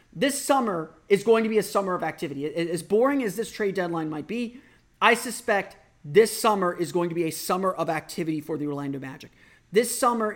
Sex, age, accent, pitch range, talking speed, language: male, 30-49, American, 160-205 Hz, 210 wpm, English